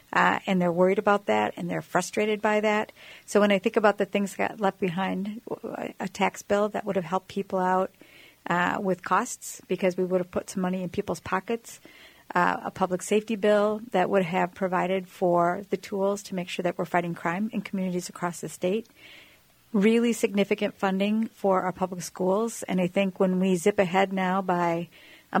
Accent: American